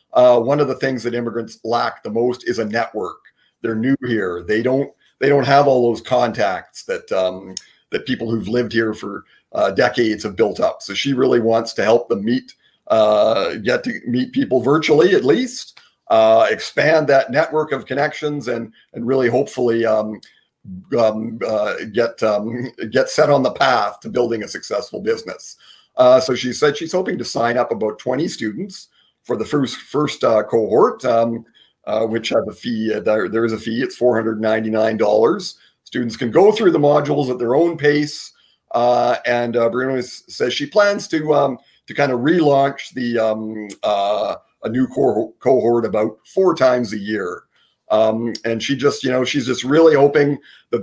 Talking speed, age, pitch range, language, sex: 185 wpm, 40-59, 115-145 Hz, English, male